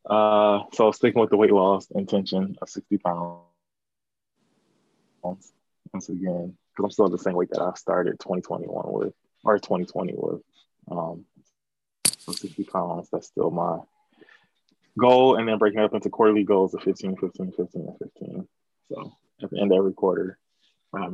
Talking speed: 170 wpm